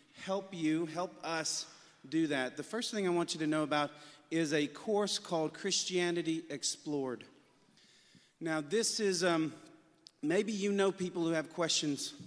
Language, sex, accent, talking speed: English, male, American, 155 wpm